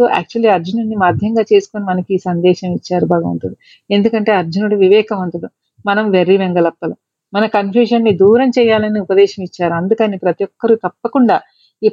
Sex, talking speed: female, 130 wpm